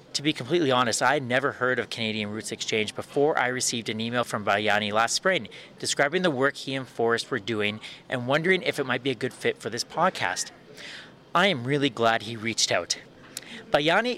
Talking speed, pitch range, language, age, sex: 205 wpm, 115-150 Hz, English, 30-49, male